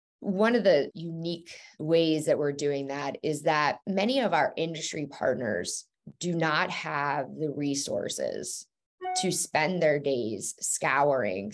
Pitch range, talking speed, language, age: 145-185 Hz, 135 wpm, English, 20-39